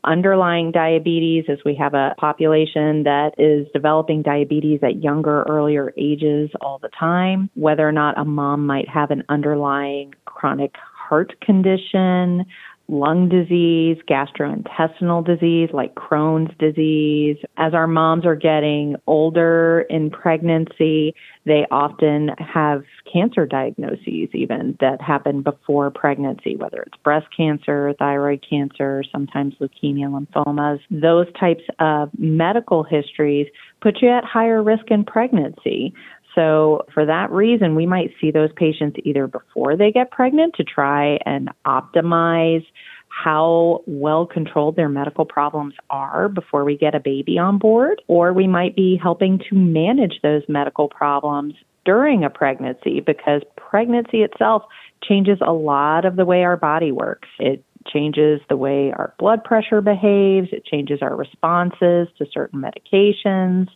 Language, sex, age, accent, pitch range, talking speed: English, female, 30-49, American, 145-175 Hz, 140 wpm